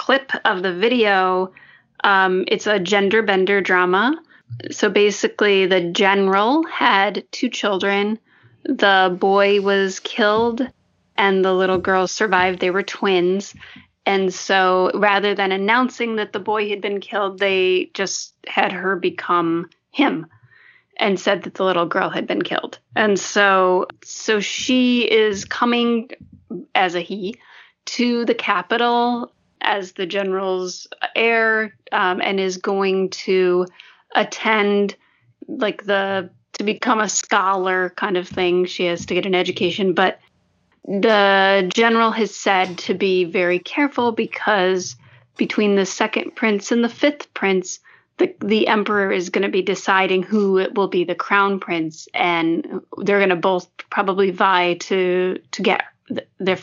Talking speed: 145 wpm